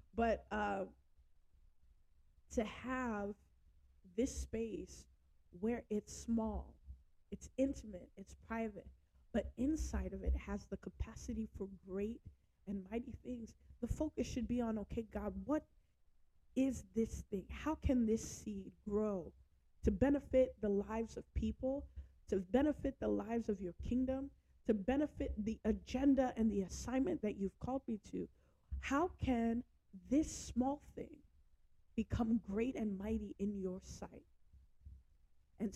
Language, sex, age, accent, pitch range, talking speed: English, female, 20-39, American, 190-235 Hz, 135 wpm